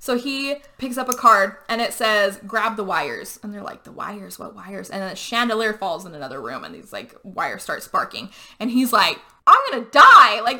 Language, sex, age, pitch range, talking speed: English, female, 20-39, 205-255 Hz, 230 wpm